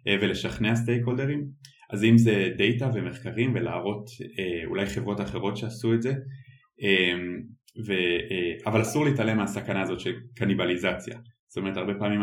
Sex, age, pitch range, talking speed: male, 20-39, 100-120 Hz, 140 wpm